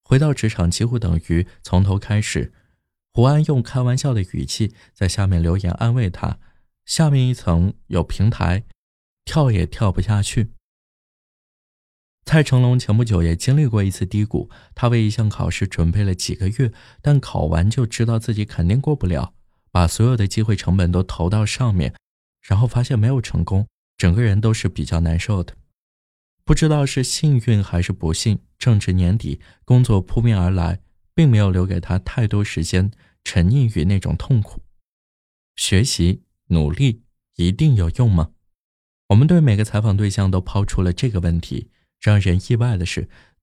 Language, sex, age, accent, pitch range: Chinese, male, 20-39, native, 90-120 Hz